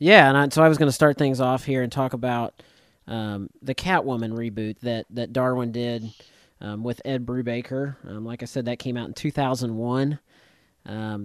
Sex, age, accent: male, 40-59, American